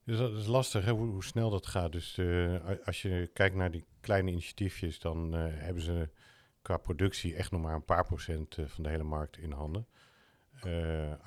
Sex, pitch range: male, 80-95 Hz